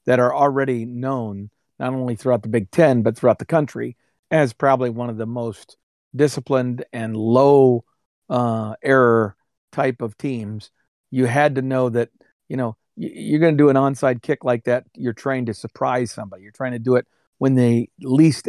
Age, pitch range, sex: 50-69, 115-135 Hz, male